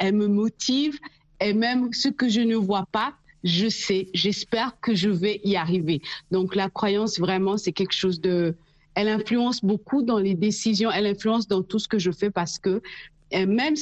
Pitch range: 185-230 Hz